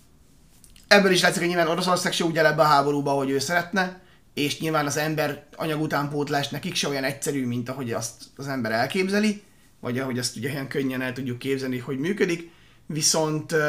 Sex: male